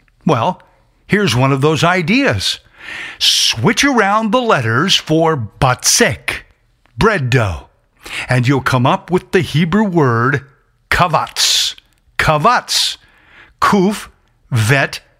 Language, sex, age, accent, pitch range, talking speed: English, male, 60-79, American, 130-190 Hz, 105 wpm